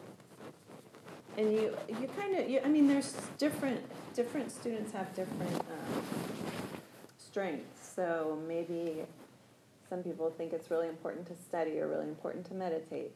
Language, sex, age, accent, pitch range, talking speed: English, female, 30-49, American, 155-205 Hz, 140 wpm